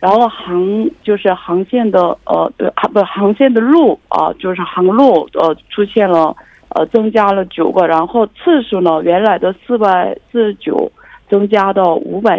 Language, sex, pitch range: Korean, female, 180-230 Hz